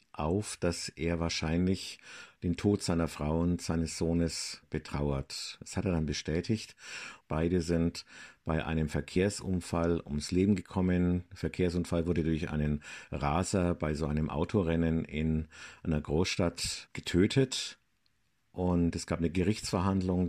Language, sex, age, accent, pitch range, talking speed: German, male, 50-69, German, 80-95 Hz, 130 wpm